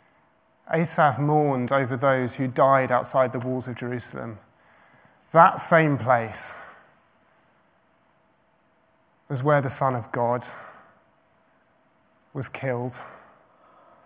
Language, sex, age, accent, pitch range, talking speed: English, male, 30-49, British, 125-160 Hz, 95 wpm